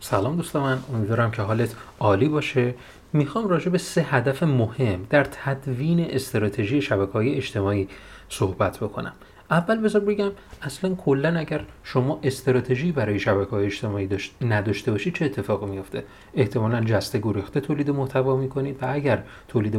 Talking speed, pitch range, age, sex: 135 wpm, 100-140 Hz, 30-49, male